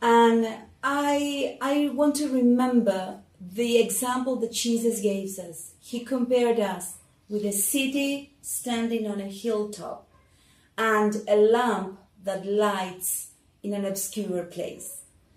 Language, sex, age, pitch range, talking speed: English, female, 30-49, 200-240 Hz, 120 wpm